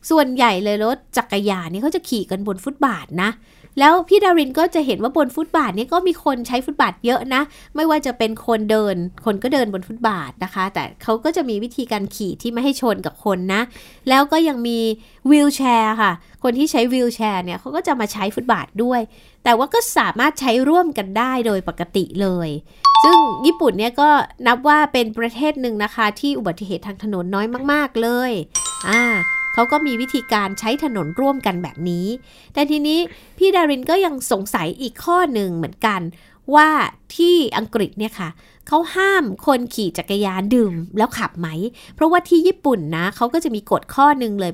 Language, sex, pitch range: Thai, female, 200-290 Hz